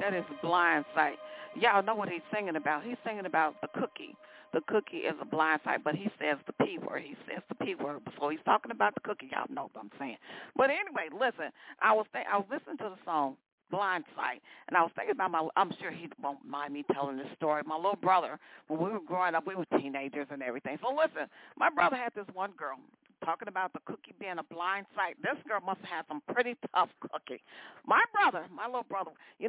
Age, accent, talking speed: 40-59, American, 240 wpm